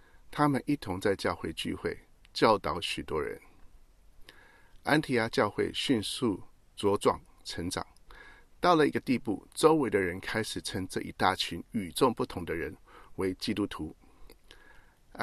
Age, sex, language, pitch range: 50-69, male, Chinese, 90-120 Hz